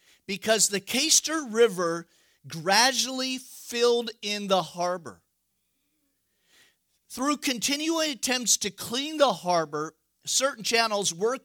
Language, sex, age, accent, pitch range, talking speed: English, male, 50-69, American, 170-240 Hz, 100 wpm